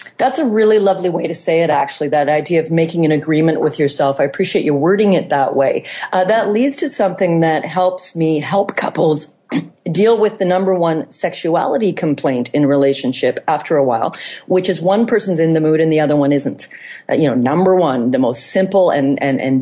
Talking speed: 210 wpm